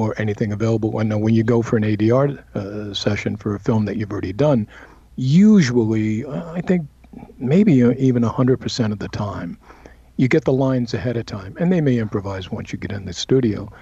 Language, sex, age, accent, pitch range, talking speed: English, male, 50-69, American, 100-125 Hz, 210 wpm